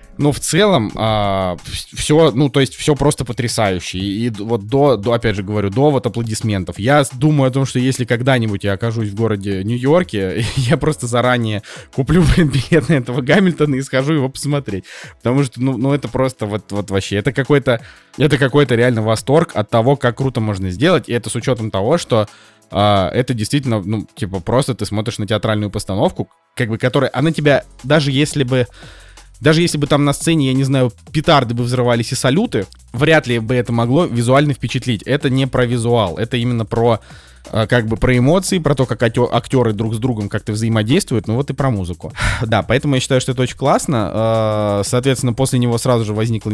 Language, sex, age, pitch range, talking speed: Russian, male, 20-39, 105-135 Hz, 195 wpm